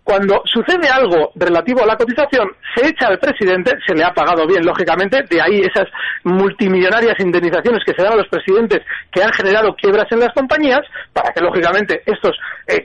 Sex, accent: male, Spanish